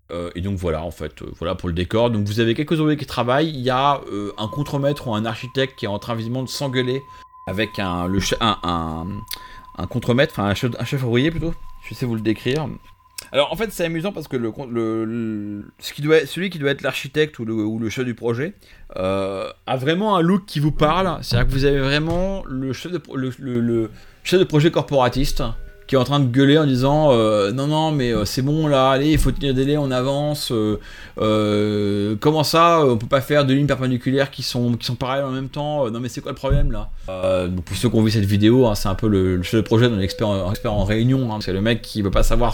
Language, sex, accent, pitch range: French, male, French, 110-145 Hz